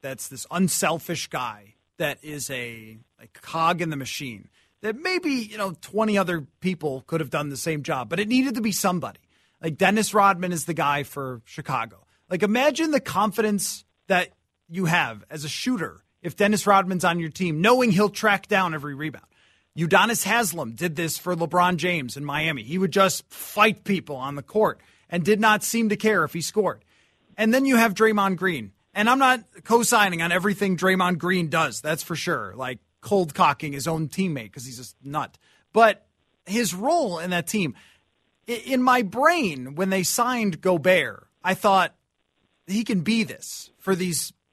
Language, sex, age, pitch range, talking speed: English, male, 30-49, 155-210 Hz, 180 wpm